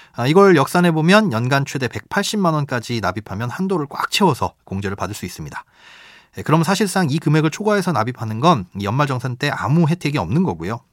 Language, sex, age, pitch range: Korean, male, 30-49, 115-170 Hz